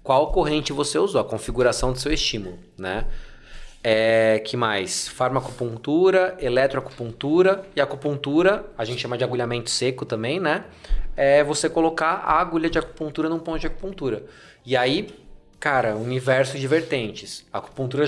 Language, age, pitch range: Portuguese, 20-39, 125-160 Hz